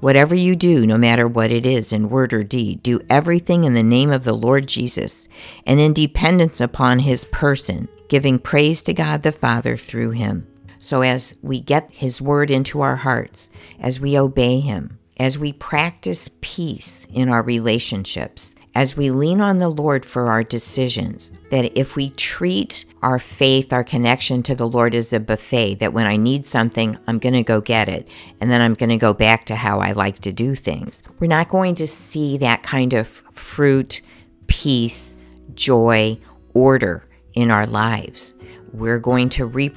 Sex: female